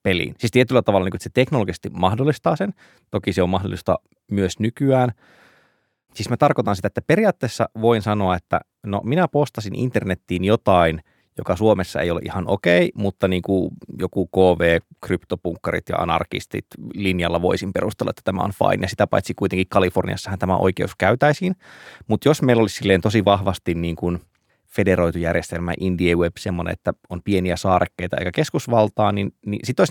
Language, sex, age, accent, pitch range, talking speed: Finnish, male, 20-39, native, 90-115 Hz, 165 wpm